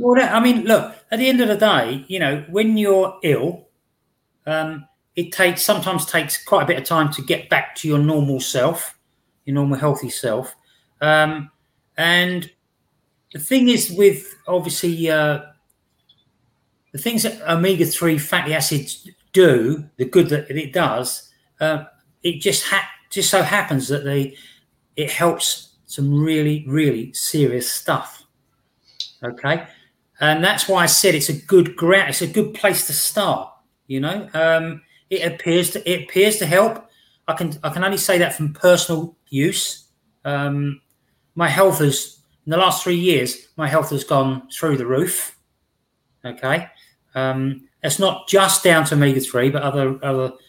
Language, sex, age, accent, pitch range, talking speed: English, male, 40-59, British, 140-180 Hz, 165 wpm